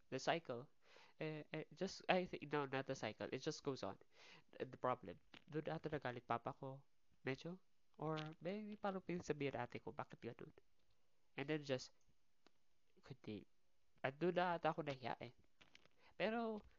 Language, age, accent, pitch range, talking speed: Filipino, 20-39, native, 145-215 Hz, 155 wpm